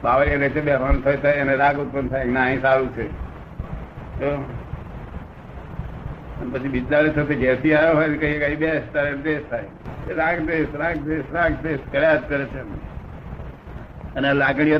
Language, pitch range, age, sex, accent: Gujarati, 130-150 Hz, 60-79, male, native